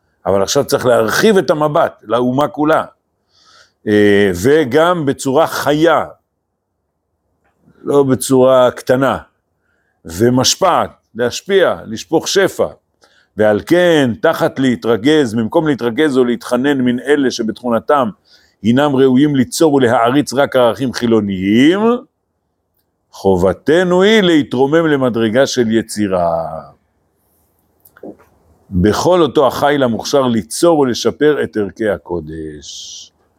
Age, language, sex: 60-79, Hebrew, male